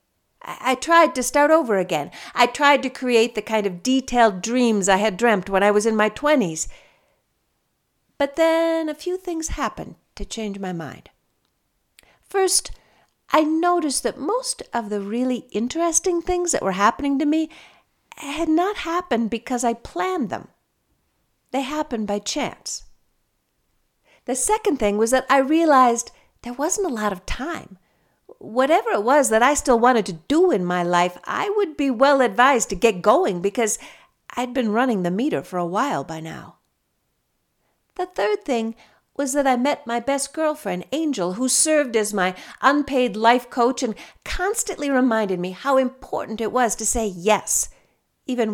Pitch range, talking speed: 210-300 Hz, 165 wpm